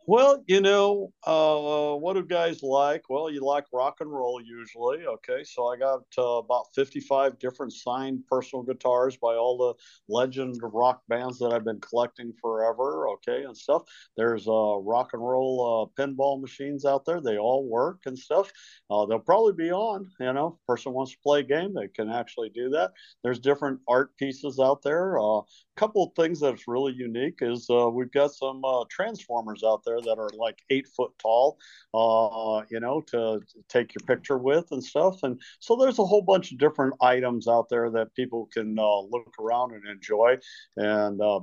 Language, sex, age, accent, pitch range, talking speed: English, male, 50-69, American, 110-140 Hz, 195 wpm